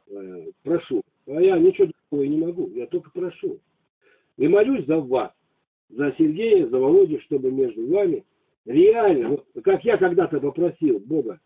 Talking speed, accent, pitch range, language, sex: 140 wpm, native, 310-390 Hz, Russian, male